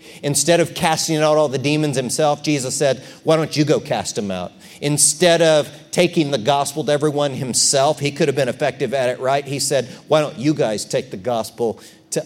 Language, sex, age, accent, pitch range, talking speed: English, male, 40-59, American, 115-150 Hz, 210 wpm